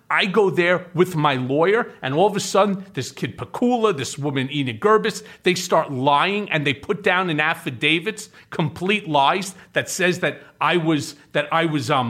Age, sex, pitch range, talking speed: 40-59, male, 145-190 Hz, 180 wpm